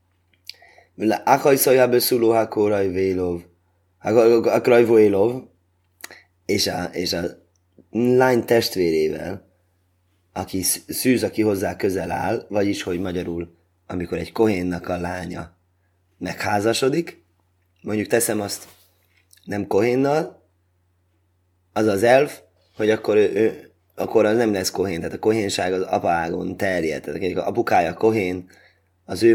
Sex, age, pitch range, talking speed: male, 20-39, 90-105 Hz, 100 wpm